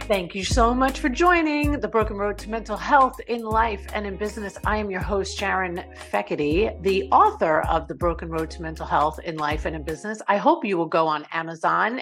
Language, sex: English, female